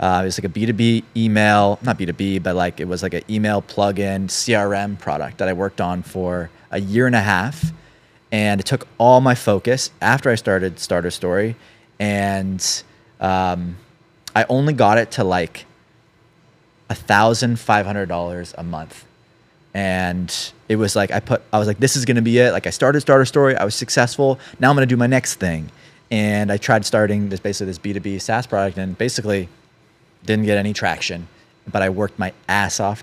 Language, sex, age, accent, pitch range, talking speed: English, male, 30-49, American, 95-120 Hz, 195 wpm